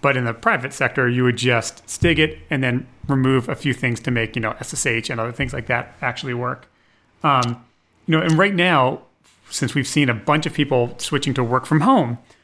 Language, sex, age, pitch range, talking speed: English, male, 30-49, 120-140 Hz, 220 wpm